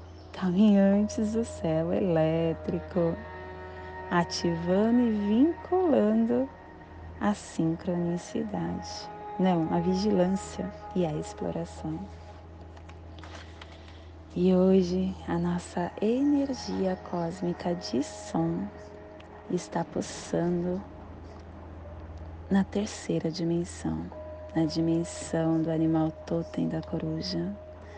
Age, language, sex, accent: 20-39, English, female, Brazilian